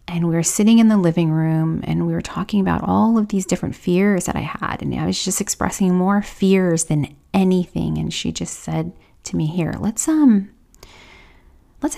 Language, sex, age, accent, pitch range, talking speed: English, female, 30-49, American, 155-190 Hz, 200 wpm